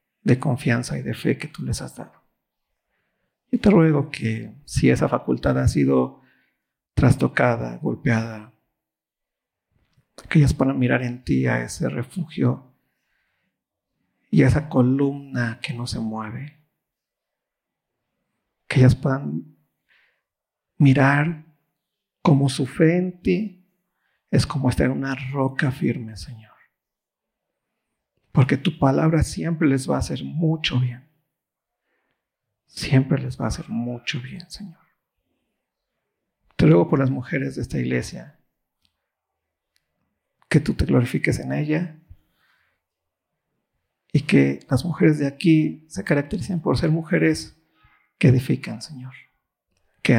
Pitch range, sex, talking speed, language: 120-155 Hz, male, 120 wpm, Spanish